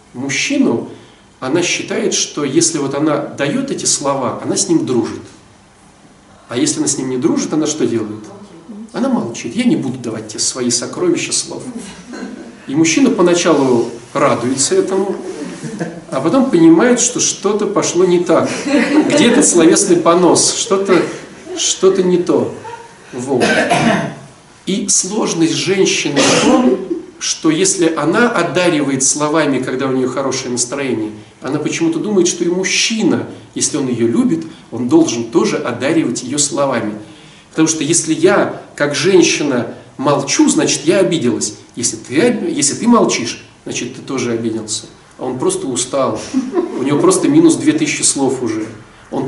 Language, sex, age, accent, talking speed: Russian, male, 40-59, native, 140 wpm